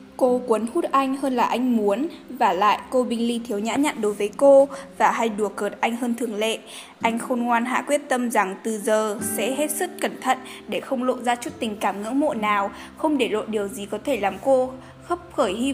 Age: 10-29